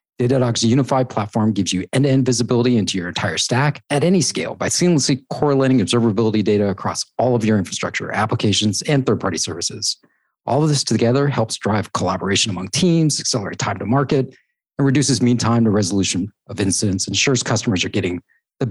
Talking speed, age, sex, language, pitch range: 175 wpm, 40-59, male, English, 100-130 Hz